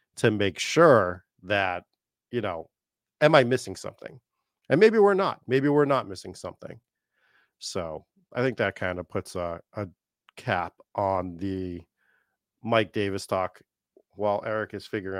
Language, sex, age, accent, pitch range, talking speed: English, male, 40-59, American, 100-120 Hz, 150 wpm